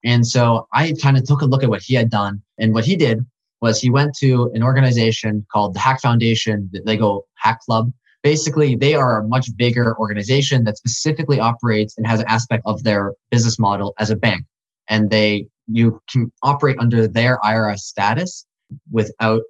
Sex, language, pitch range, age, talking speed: male, English, 100-125 Hz, 20-39, 190 wpm